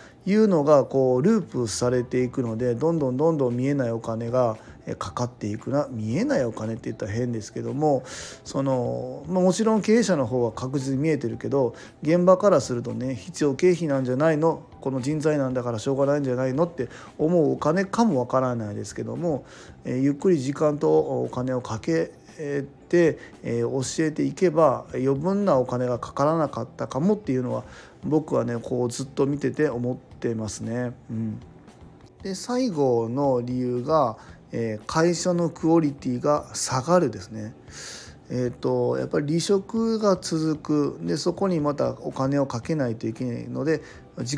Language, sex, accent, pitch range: Japanese, male, native, 120-160 Hz